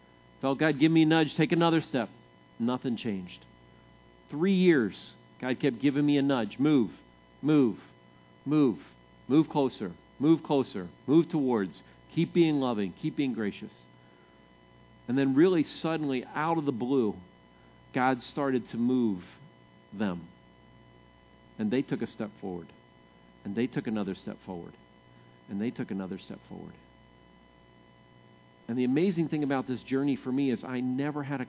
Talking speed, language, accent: 150 wpm, English, American